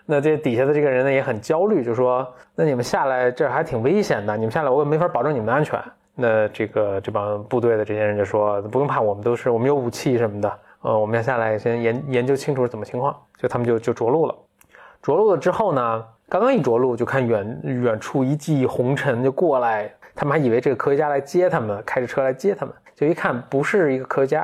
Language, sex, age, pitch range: Chinese, male, 20-39, 115-140 Hz